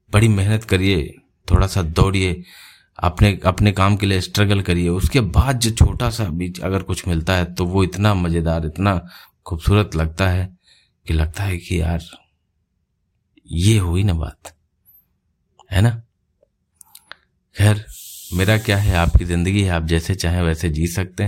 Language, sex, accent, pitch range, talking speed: Hindi, male, native, 85-105 Hz, 155 wpm